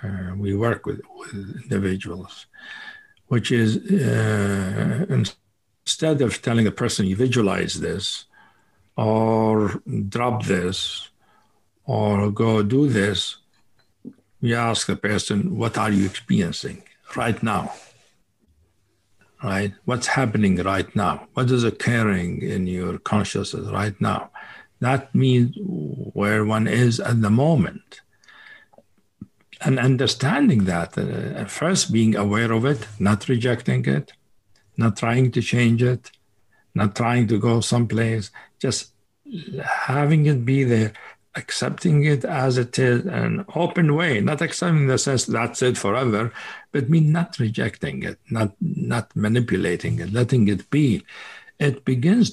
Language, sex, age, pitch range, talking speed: English, male, 60-79, 100-130 Hz, 130 wpm